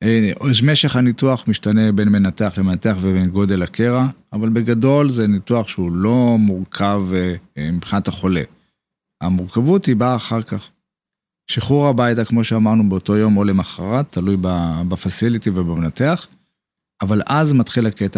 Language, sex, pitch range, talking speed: Hebrew, male, 95-120 Hz, 130 wpm